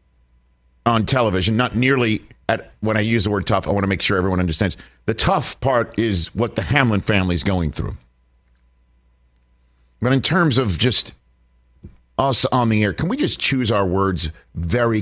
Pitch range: 85-140 Hz